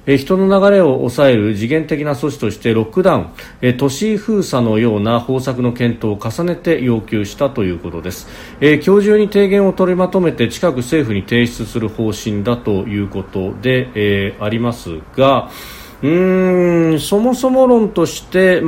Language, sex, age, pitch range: Japanese, male, 40-59, 110-150 Hz